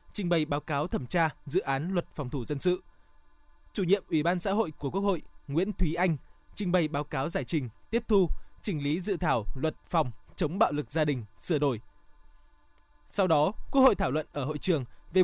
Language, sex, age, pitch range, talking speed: Vietnamese, male, 20-39, 145-190 Hz, 220 wpm